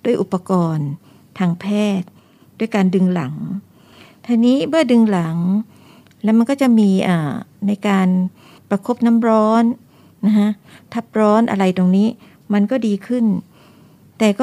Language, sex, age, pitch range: Thai, female, 60-79, 185-225 Hz